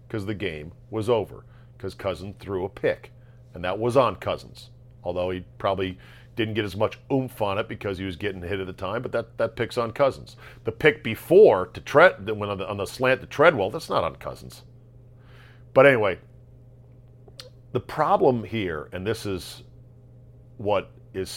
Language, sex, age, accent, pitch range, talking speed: English, male, 50-69, American, 115-135 Hz, 190 wpm